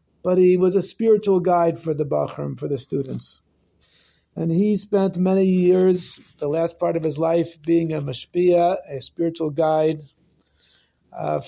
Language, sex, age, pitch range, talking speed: English, male, 50-69, 145-185 Hz, 155 wpm